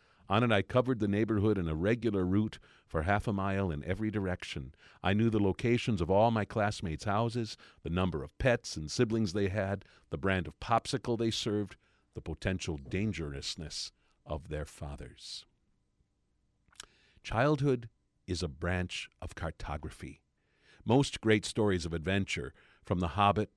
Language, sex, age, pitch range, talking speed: English, male, 50-69, 90-115 Hz, 155 wpm